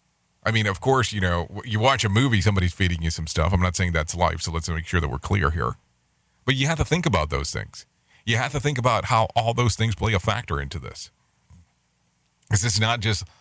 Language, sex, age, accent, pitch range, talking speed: English, male, 40-59, American, 90-120 Hz, 245 wpm